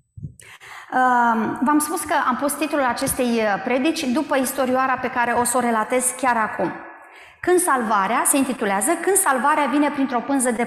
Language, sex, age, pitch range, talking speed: Romanian, female, 30-49, 230-295 Hz, 155 wpm